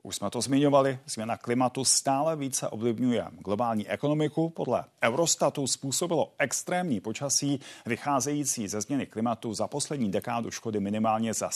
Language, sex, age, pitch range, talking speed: Czech, male, 40-59, 115-150 Hz, 135 wpm